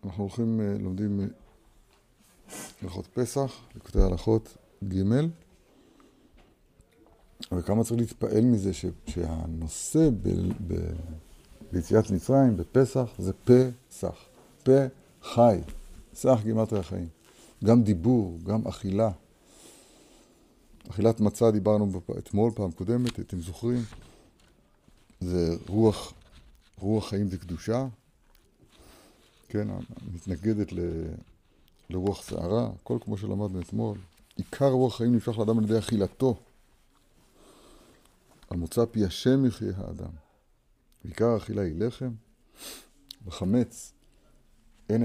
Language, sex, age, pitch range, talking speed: Hebrew, male, 60-79, 95-115 Hz, 95 wpm